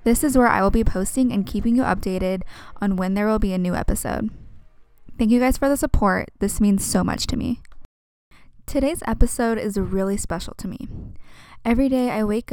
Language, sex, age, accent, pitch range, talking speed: English, female, 10-29, American, 185-235 Hz, 200 wpm